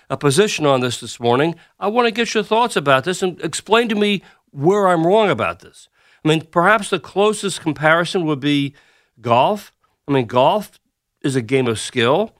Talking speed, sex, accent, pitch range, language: 195 wpm, male, American, 145-200 Hz, English